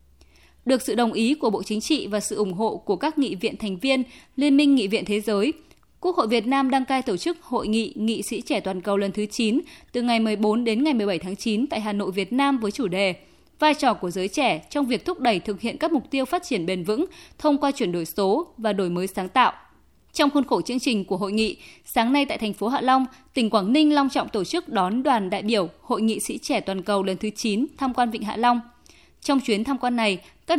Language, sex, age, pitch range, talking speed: Vietnamese, female, 20-39, 210-275 Hz, 260 wpm